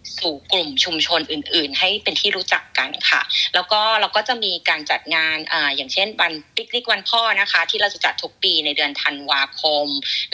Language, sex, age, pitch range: Thai, female, 20-39, 155-200 Hz